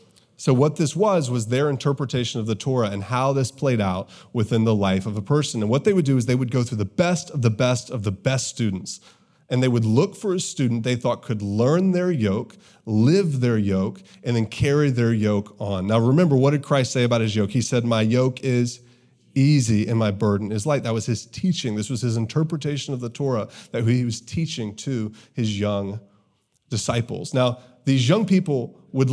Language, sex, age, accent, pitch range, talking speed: English, male, 30-49, American, 110-140 Hz, 220 wpm